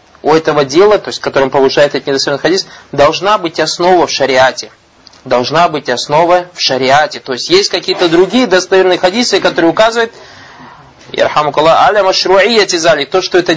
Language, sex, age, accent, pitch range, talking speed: Russian, male, 20-39, native, 155-215 Hz, 140 wpm